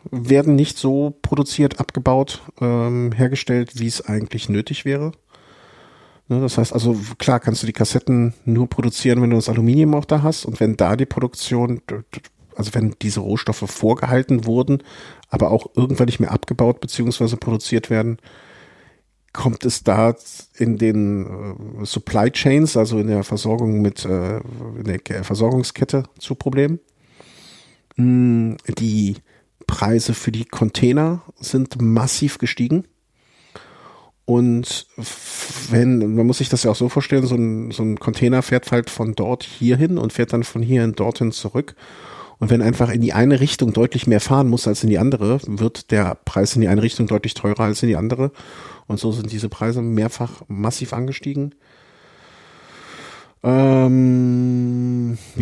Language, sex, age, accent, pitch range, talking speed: German, male, 50-69, German, 110-130 Hz, 155 wpm